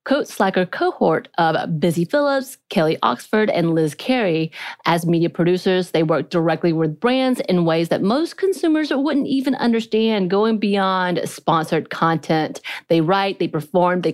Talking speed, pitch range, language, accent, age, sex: 155 wpm, 155-210 Hz, English, American, 30-49, female